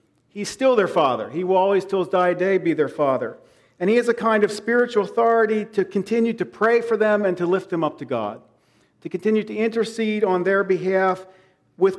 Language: English